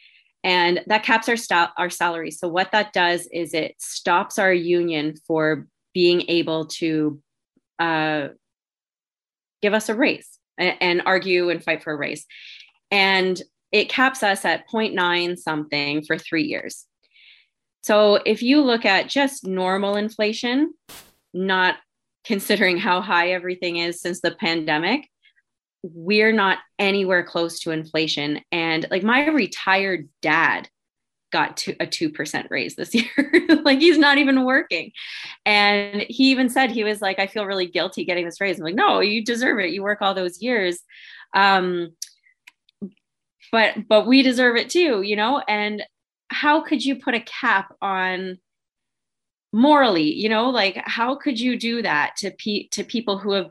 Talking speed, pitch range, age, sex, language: 155 wpm, 175-235 Hz, 20-39, female, English